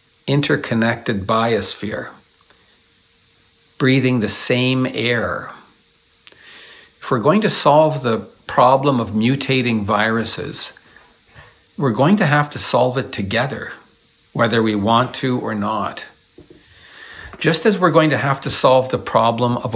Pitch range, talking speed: 110-140 Hz, 125 wpm